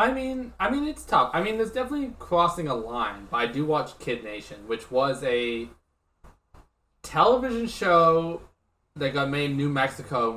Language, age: English, 20-39